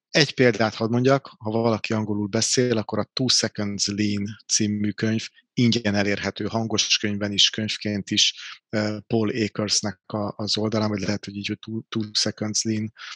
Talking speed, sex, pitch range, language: 135 wpm, male, 105-115 Hz, Hungarian